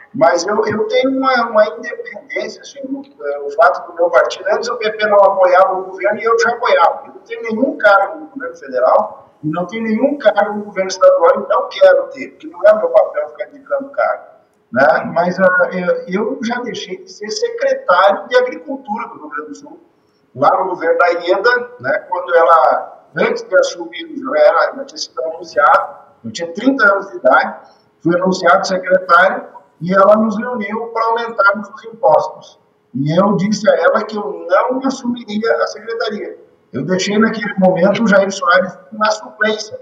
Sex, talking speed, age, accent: male, 185 wpm, 50-69, Brazilian